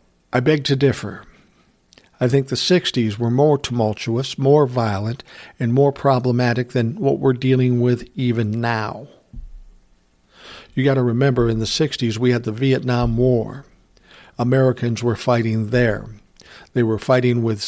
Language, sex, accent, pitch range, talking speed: English, male, American, 115-130 Hz, 145 wpm